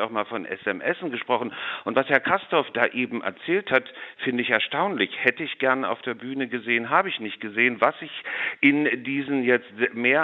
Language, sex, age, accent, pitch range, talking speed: German, male, 50-69, German, 110-130 Hz, 195 wpm